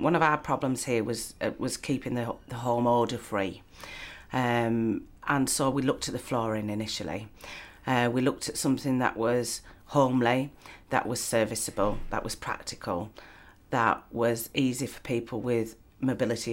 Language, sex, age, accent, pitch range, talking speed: English, female, 40-59, British, 115-135 Hz, 160 wpm